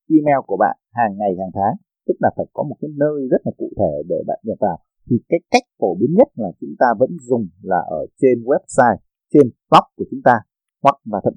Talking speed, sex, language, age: 240 wpm, male, Vietnamese, 30-49